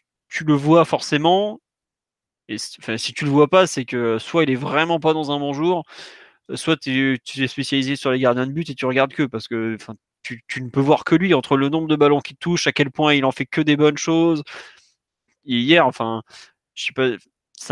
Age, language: 20-39, French